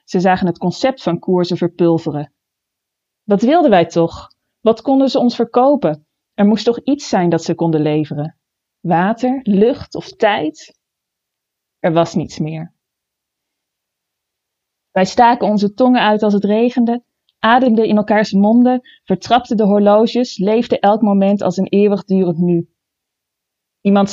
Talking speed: 140 wpm